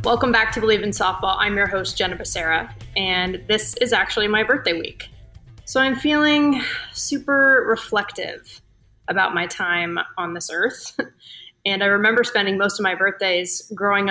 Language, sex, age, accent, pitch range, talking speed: English, female, 20-39, American, 185-230 Hz, 160 wpm